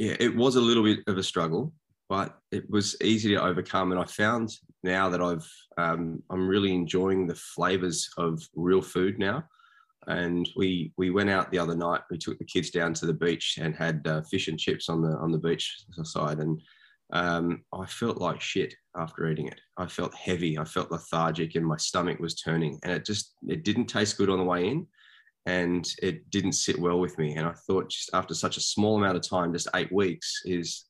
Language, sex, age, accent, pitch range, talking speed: English, male, 20-39, Australian, 85-95 Hz, 220 wpm